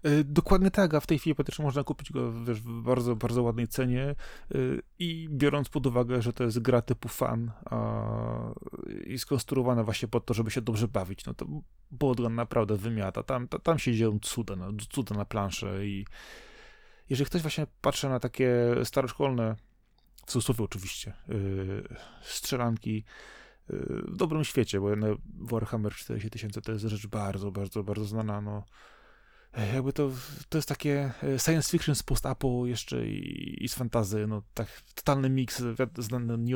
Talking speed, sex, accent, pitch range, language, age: 160 wpm, male, native, 110-140 Hz, Polish, 20-39